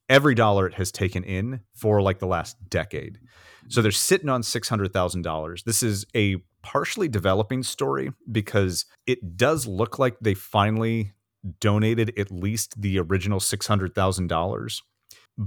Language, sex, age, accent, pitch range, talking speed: English, male, 30-49, American, 90-110 Hz, 135 wpm